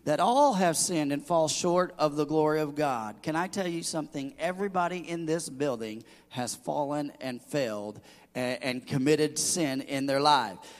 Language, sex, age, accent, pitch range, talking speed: English, male, 40-59, American, 145-205 Hz, 170 wpm